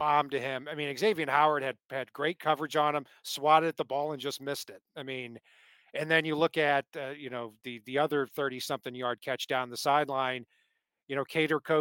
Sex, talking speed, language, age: male, 225 wpm, English, 40-59